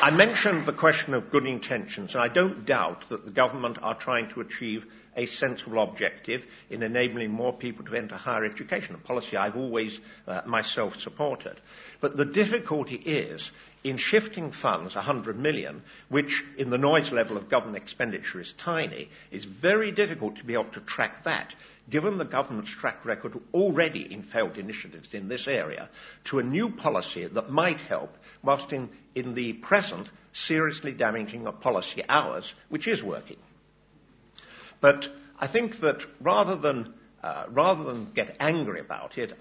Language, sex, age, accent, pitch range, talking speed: English, male, 50-69, British, 120-160 Hz, 165 wpm